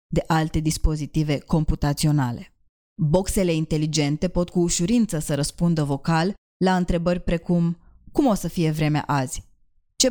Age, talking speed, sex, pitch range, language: 20-39, 130 wpm, female, 155-185 Hz, Romanian